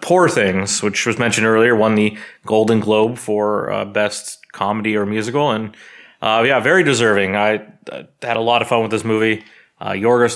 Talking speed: 190 wpm